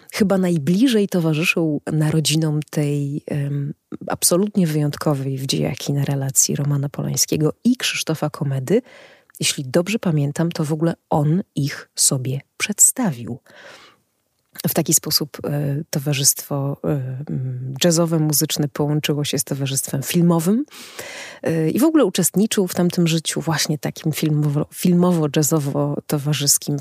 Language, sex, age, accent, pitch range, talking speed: Polish, female, 30-49, native, 140-170 Hz, 105 wpm